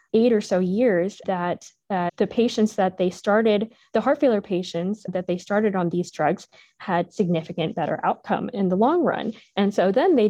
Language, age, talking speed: English, 20-39, 190 wpm